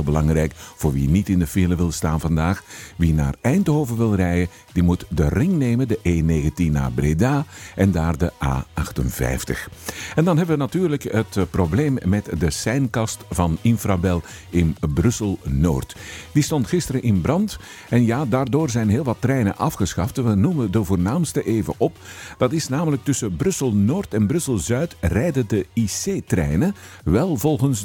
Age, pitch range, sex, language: 50-69, 85-130 Hz, male, Dutch